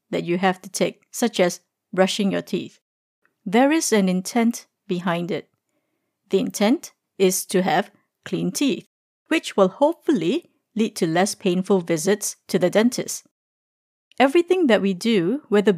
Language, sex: English, female